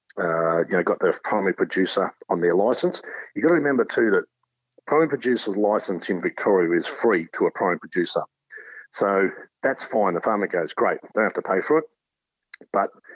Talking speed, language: 185 wpm, English